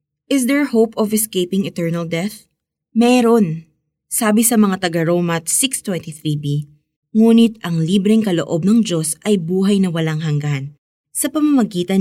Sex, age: female, 20-39